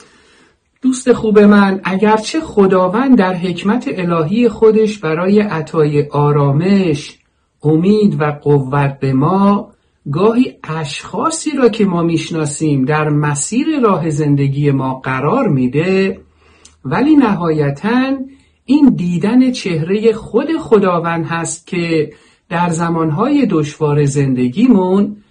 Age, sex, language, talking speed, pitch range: 50-69, male, Persian, 100 wpm, 145-205 Hz